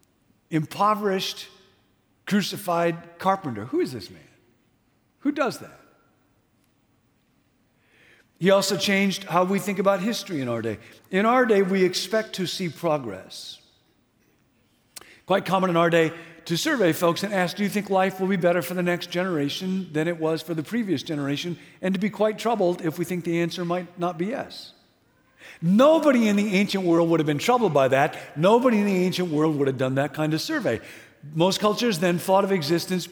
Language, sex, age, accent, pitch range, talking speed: English, male, 50-69, American, 155-195 Hz, 180 wpm